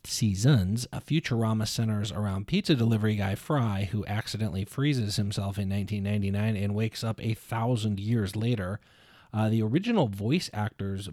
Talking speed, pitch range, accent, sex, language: 155 wpm, 105-120 Hz, American, male, English